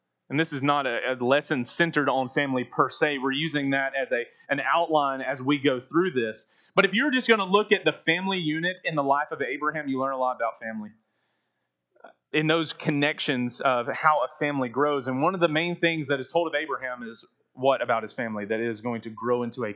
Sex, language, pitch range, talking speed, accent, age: male, English, 135-175 Hz, 235 wpm, American, 30-49